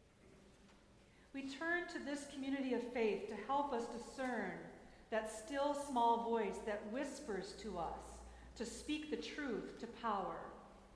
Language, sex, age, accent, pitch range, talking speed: English, female, 40-59, American, 220-275 Hz, 130 wpm